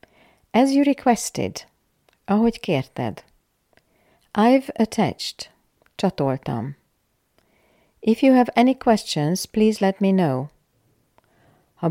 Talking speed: 90 wpm